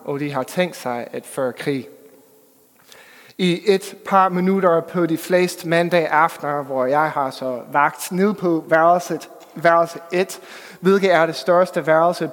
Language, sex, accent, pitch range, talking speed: English, male, Danish, 150-190 Hz, 155 wpm